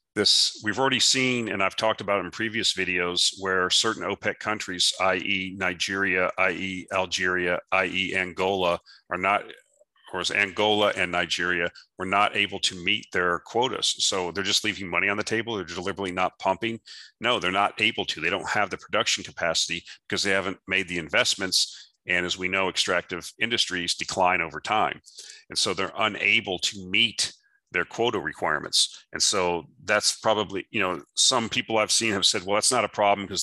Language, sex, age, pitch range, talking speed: English, male, 40-59, 95-115 Hz, 180 wpm